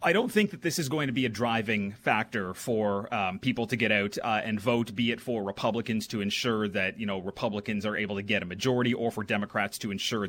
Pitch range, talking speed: 110-125 Hz, 245 wpm